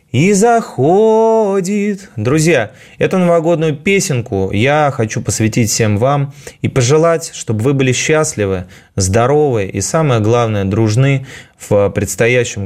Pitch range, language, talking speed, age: 100-135 Hz, Russian, 115 wpm, 20-39